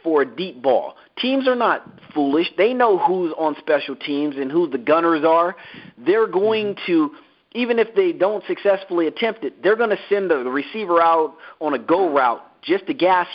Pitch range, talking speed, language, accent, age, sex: 145-200 Hz, 195 wpm, English, American, 40-59, male